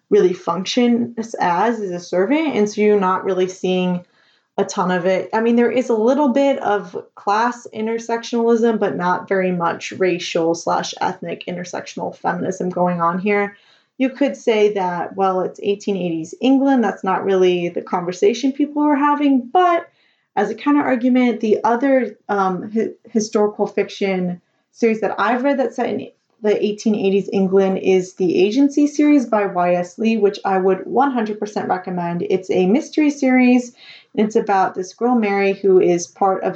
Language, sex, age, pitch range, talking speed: English, female, 20-39, 185-240 Hz, 165 wpm